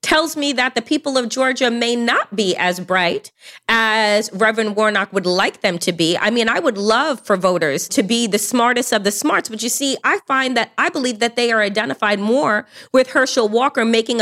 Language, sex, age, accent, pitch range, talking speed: English, female, 30-49, American, 225-315 Hz, 215 wpm